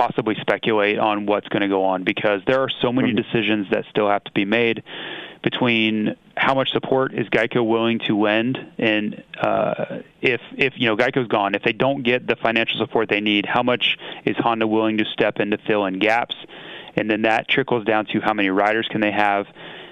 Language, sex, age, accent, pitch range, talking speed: English, male, 30-49, American, 105-125 Hz, 210 wpm